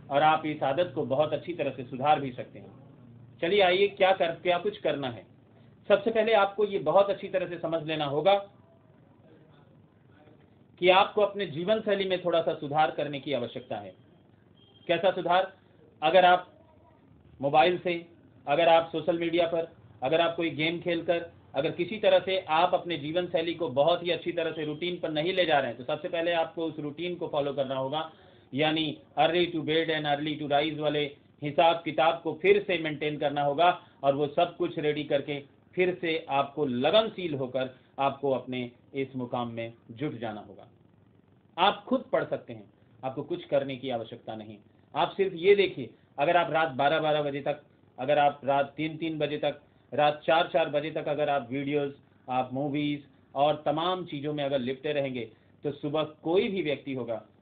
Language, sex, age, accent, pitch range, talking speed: Hindi, male, 40-59, native, 135-170 Hz, 180 wpm